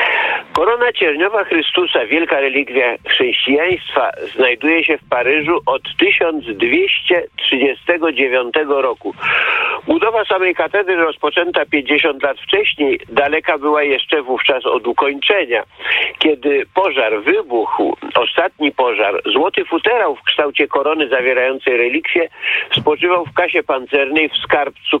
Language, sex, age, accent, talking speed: Polish, male, 50-69, native, 105 wpm